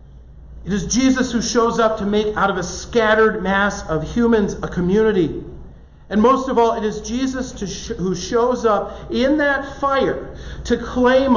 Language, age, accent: English, 40-59, American